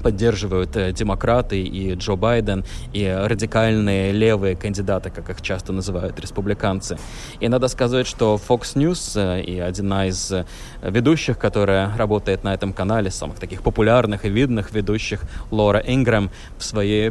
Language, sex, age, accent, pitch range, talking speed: Russian, male, 20-39, native, 95-110 Hz, 135 wpm